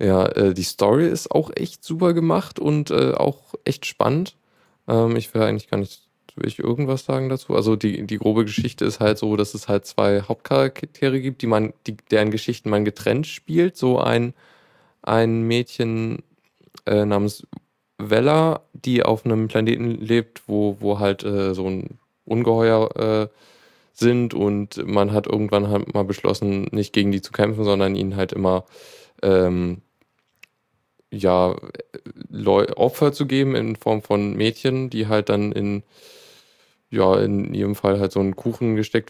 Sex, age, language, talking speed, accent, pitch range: male, 20-39, German, 165 wpm, German, 100-120 Hz